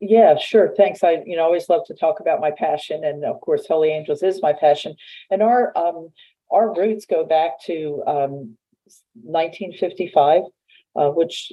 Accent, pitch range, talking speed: American, 150-185 Hz, 170 wpm